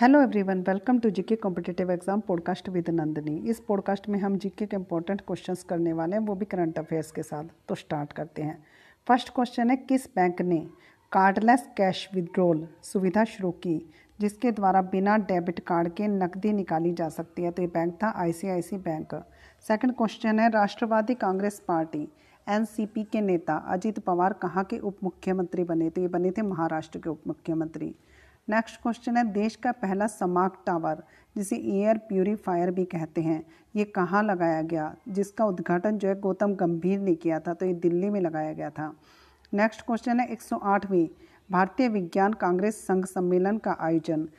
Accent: native